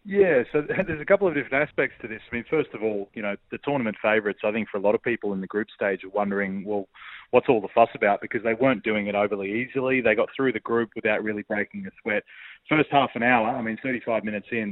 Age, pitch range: 30-49, 100-120 Hz